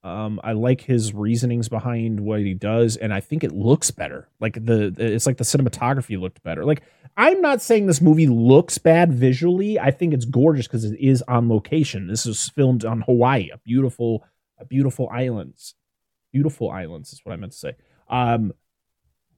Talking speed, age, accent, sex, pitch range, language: 185 wpm, 30-49, American, male, 115-150 Hz, English